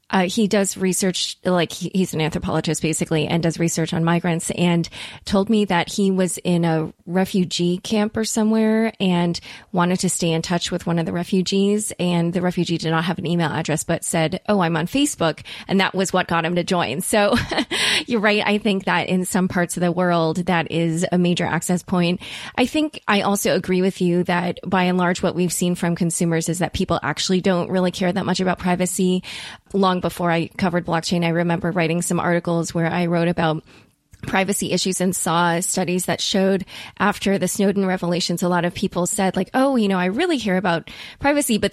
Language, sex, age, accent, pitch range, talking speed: English, female, 20-39, American, 170-195 Hz, 210 wpm